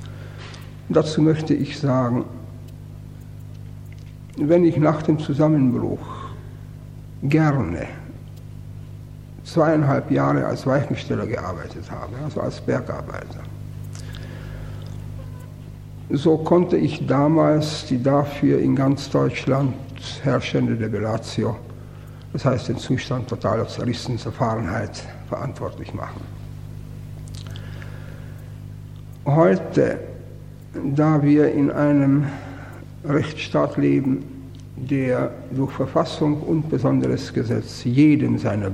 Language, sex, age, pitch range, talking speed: German, male, 60-79, 120-140 Hz, 80 wpm